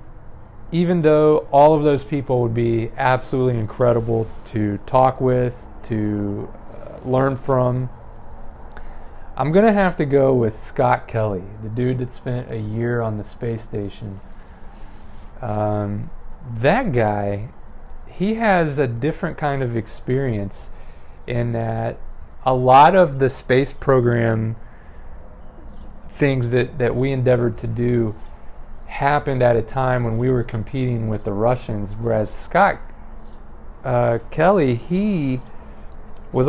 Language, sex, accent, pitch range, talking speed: English, male, American, 105-135 Hz, 125 wpm